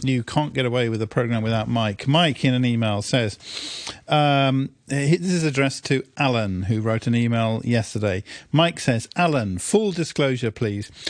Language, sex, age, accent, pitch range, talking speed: English, male, 50-69, British, 120-145 Hz, 170 wpm